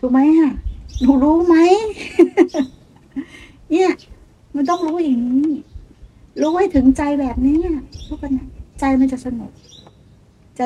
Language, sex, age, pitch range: Thai, female, 60-79, 210-275 Hz